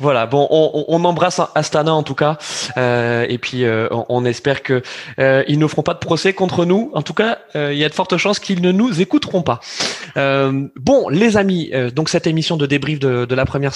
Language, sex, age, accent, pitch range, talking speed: French, male, 20-39, French, 135-170 Hz, 235 wpm